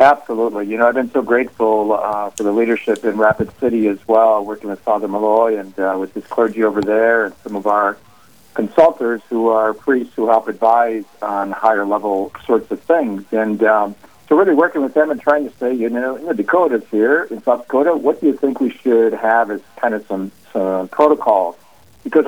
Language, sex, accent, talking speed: English, male, American, 205 wpm